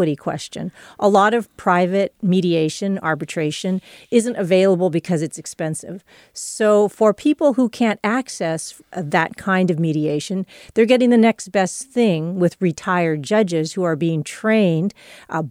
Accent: American